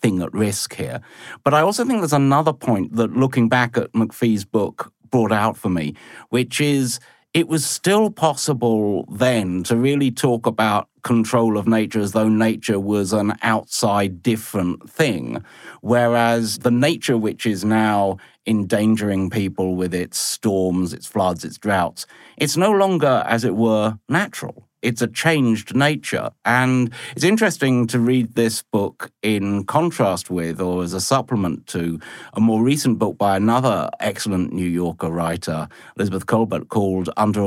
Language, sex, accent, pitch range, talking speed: English, male, British, 100-125 Hz, 155 wpm